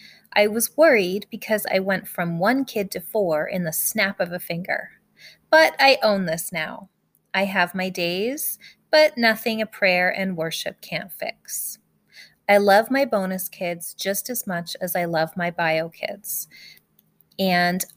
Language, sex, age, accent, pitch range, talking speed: English, female, 20-39, American, 170-205 Hz, 165 wpm